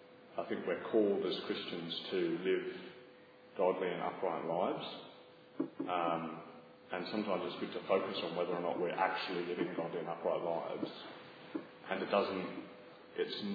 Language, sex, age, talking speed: English, male, 30-49, 150 wpm